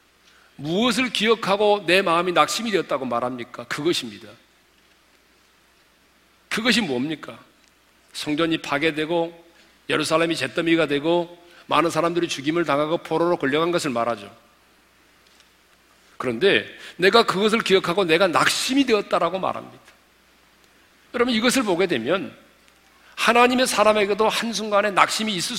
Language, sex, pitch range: Korean, male, 160-235 Hz